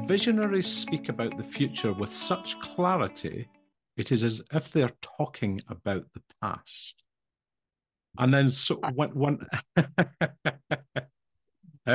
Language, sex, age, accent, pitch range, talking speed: English, male, 50-69, British, 100-140 Hz, 110 wpm